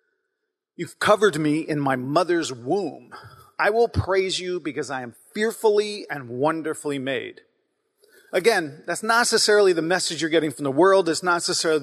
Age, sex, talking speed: 40-59, male, 160 wpm